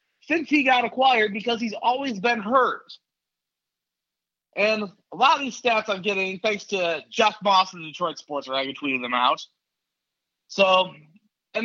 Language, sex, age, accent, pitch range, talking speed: English, male, 30-49, American, 180-225 Hz, 155 wpm